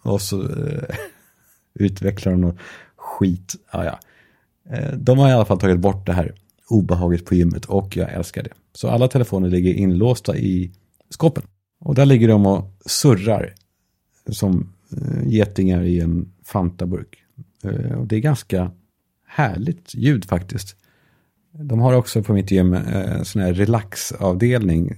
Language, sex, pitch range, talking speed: Swedish, male, 95-120 Hz, 140 wpm